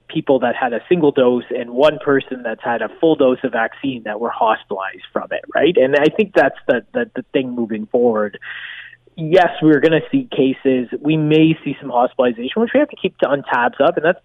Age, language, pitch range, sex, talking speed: 20-39, English, 115-150 Hz, male, 225 wpm